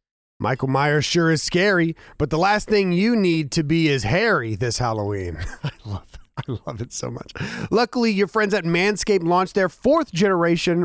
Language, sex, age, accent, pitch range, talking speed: English, male, 30-49, American, 120-175 Hz, 185 wpm